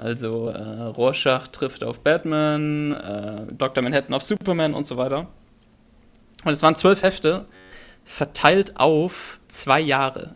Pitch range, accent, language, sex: 130-160 Hz, German, German, male